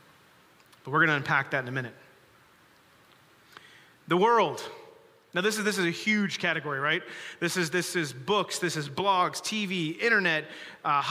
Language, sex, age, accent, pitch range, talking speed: English, male, 30-49, American, 175-220 Hz, 165 wpm